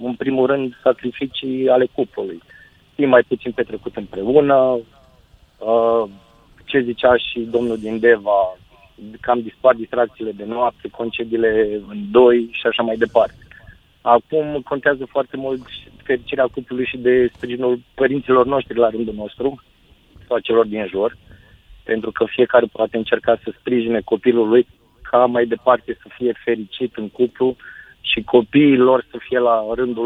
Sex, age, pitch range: male, 30-49, 115-130 Hz